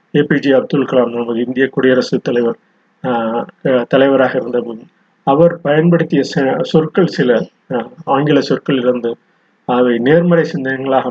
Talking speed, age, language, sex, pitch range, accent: 110 wpm, 30-49, Tamil, male, 125-155 Hz, native